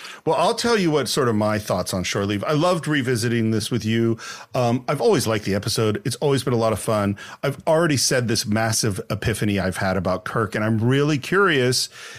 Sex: male